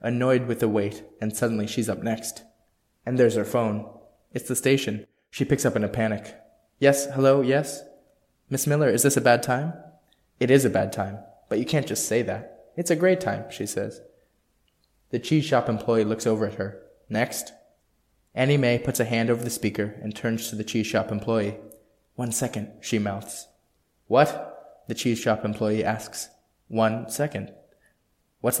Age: 20-39